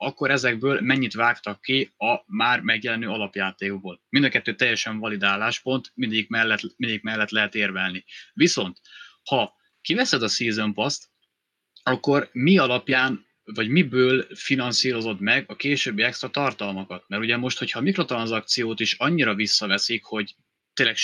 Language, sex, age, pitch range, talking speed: Hungarian, male, 20-39, 105-130 Hz, 135 wpm